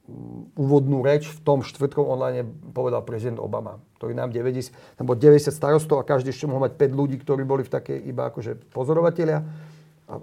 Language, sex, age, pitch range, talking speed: Slovak, male, 40-59, 130-150 Hz, 175 wpm